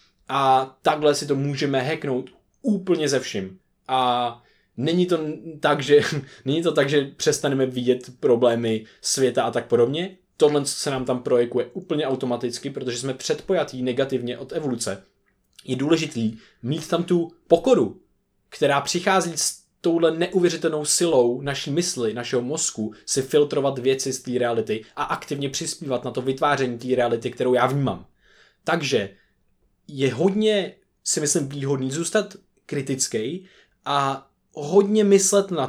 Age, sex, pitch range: 20-39, male, 135-175 Hz